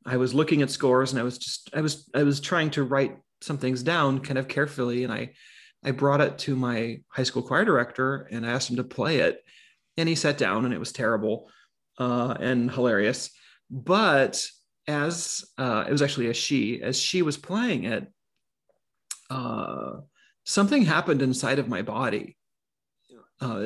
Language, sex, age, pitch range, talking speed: English, male, 30-49, 130-160 Hz, 180 wpm